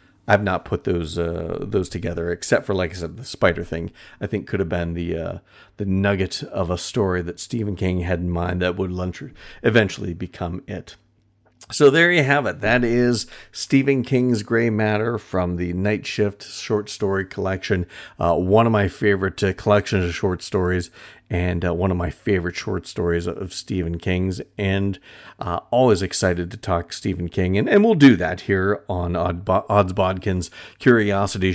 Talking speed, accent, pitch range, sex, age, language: 180 wpm, American, 90-105 Hz, male, 50-69, English